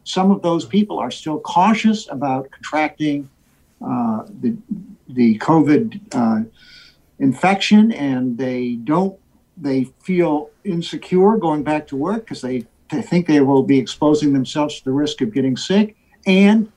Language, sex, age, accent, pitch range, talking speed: English, male, 60-79, American, 135-205 Hz, 145 wpm